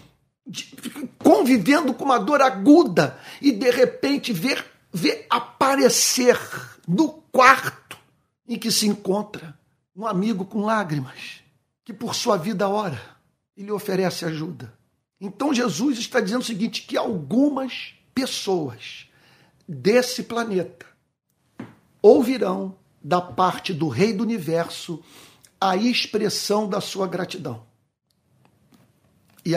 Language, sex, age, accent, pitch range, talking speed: Portuguese, male, 60-79, Brazilian, 180-255 Hz, 110 wpm